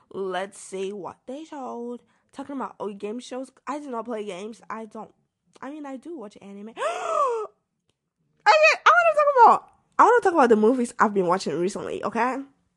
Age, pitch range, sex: 10-29, 215-285 Hz, female